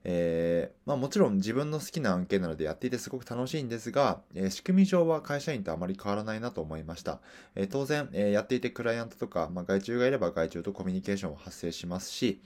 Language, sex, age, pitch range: Japanese, male, 20-39, 85-120 Hz